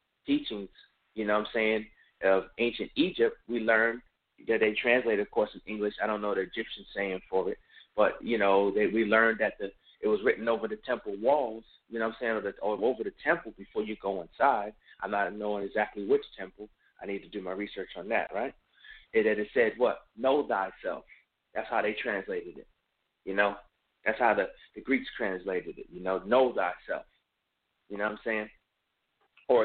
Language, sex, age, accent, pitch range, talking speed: English, male, 30-49, American, 105-130 Hz, 205 wpm